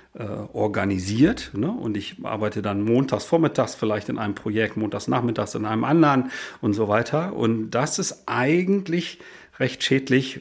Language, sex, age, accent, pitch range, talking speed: German, male, 40-59, German, 110-145 Hz, 145 wpm